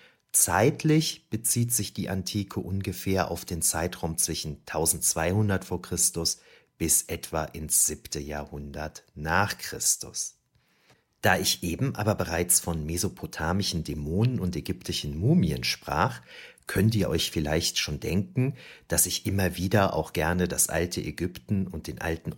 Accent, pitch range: German, 80-115 Hz